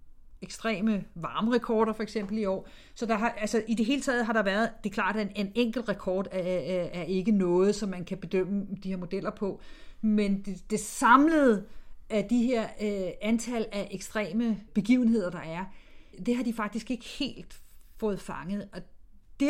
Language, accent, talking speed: Danish, native, 180 wpm